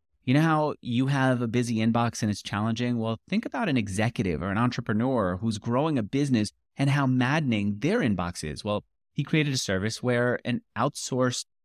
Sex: male